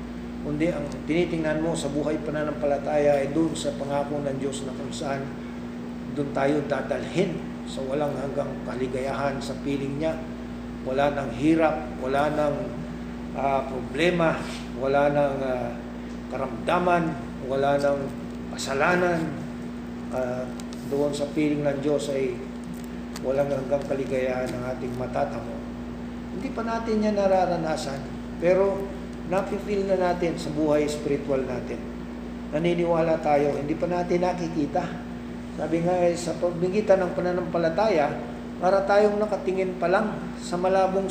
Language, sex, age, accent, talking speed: English, male, 50-69, Filipino, 125 wpm